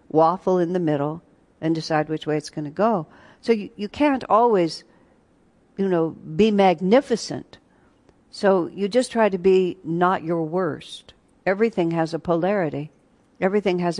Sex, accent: female, American